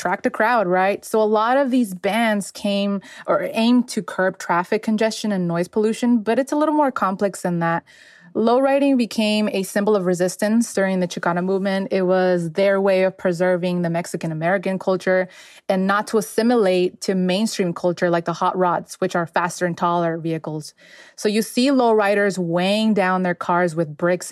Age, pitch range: 20-39, 180-205 Hz